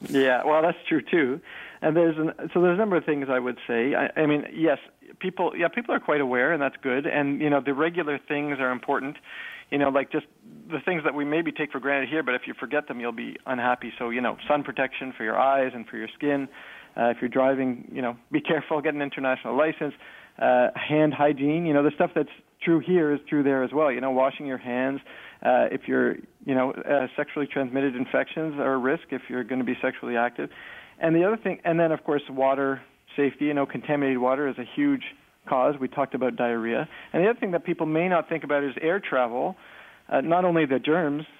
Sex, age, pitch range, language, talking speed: male, 40-59, 130-155 Hz, English, 235 wpm